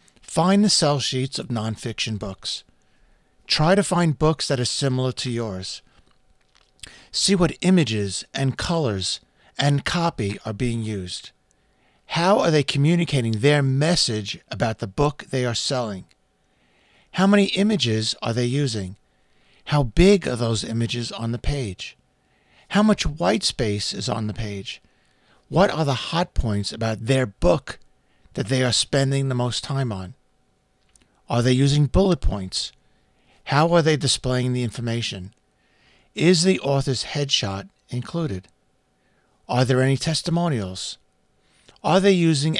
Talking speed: 140 wpm